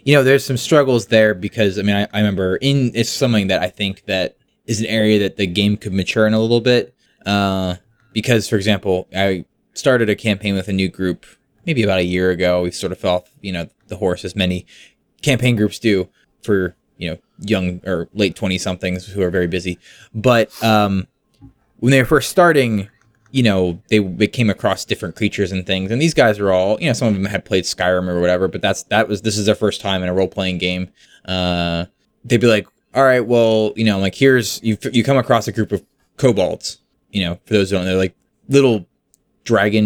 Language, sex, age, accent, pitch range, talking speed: English, male, 20-39, American, 95-120 Hz, 225 wpm